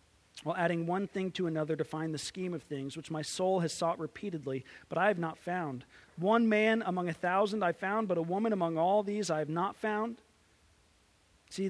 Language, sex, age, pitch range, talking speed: English, male, 30-49, 155-195 Hz, 210 wpm